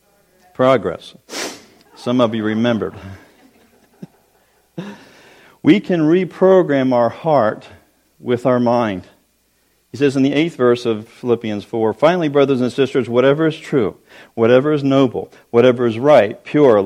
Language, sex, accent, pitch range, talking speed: English, male, American, 110-145 Hz, 125 wpm